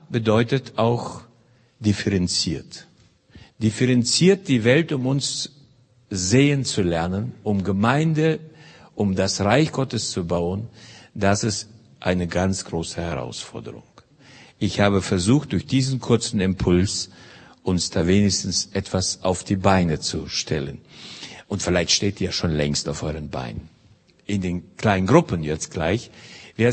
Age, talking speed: 60-79, 130 wpm